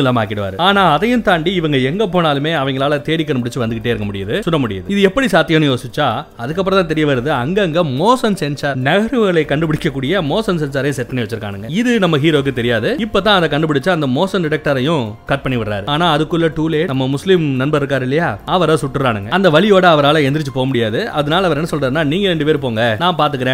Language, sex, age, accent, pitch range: Tamil, male, 30-49, native, 130-175 Hz